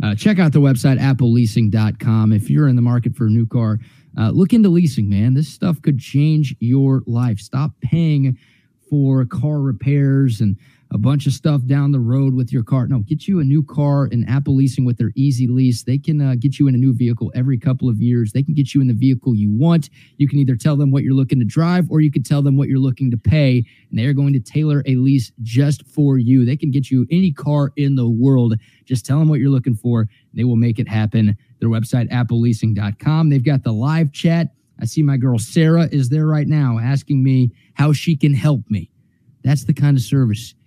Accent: American